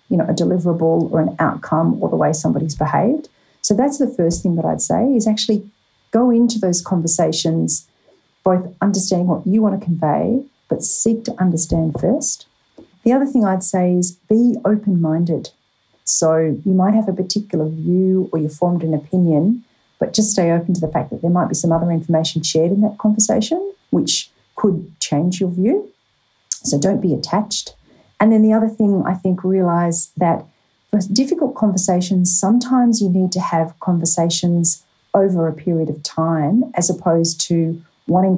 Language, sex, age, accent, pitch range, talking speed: English, female, 40-59, Australian, 165-205 Hz, 175 wpm